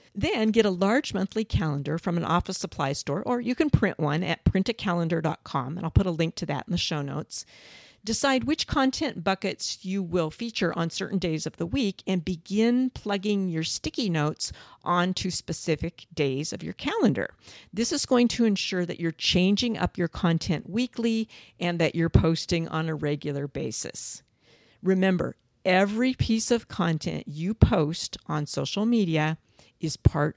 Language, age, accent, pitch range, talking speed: English, 50-69, American, 160-210 Hz, 170 wpm